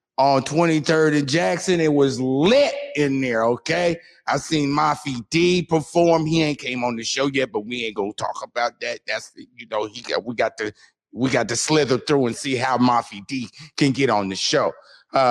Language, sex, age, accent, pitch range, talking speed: English, male, 30-49, American, 115-145 Hz, 215 wpm